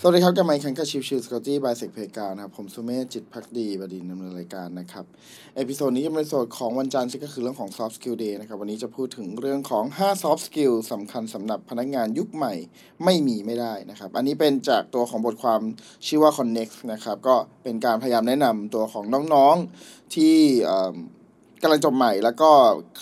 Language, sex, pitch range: Thai, male, 115-145 Hz